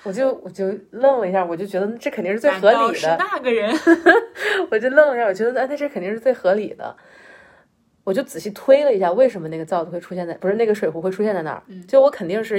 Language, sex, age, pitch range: Chinese, female, 30-49, 195-280 Hz